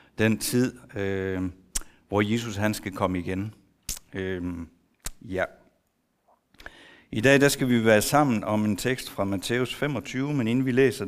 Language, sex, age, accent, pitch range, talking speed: Danish, male, 60-79, native, 100-125 Hz, 150 wpm